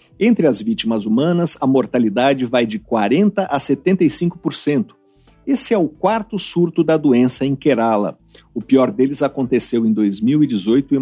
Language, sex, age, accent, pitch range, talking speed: Portuguese, male, 50-69, Brazilian, 120-175 Hz, 145 wpm